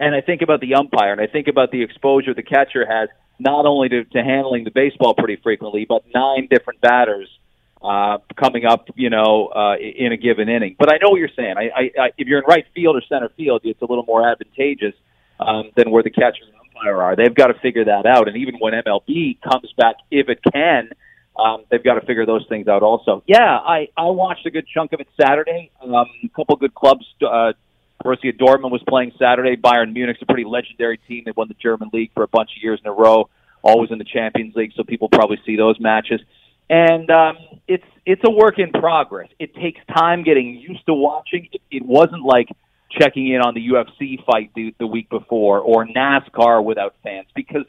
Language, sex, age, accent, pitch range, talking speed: English, male, 40-59, American, 110-145 Hz, 225 wpm